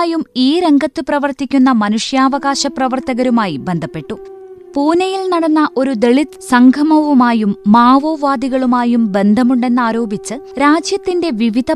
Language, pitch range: Malayalam, 215-265 Hz